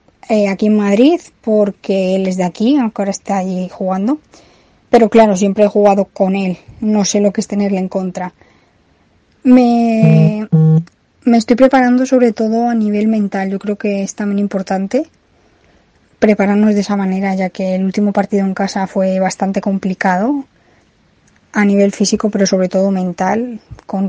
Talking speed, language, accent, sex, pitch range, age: 160 wpm, Spanish, Spanish, female, 190-215 Hz, 20-39